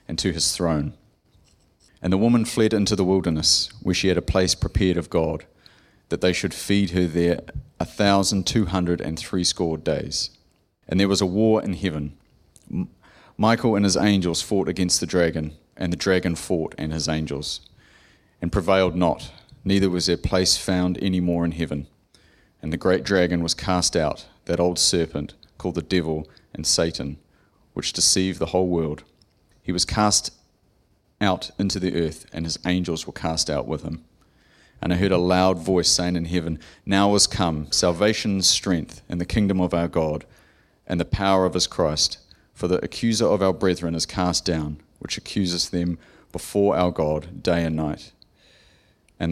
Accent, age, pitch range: Australian, 30-49, 80-95 Hz